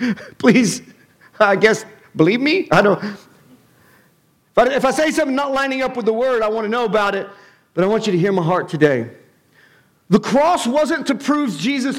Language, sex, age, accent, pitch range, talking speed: English, male, 50-69, American, 225-305 Hz, 195 wpm